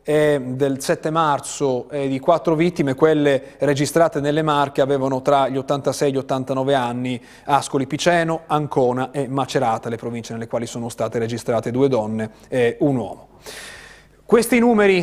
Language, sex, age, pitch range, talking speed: Italian, male, 30-49, 135-185 Hz, 155 wpm